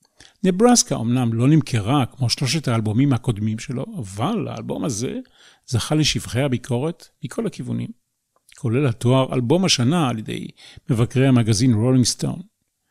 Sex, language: male, Hebrew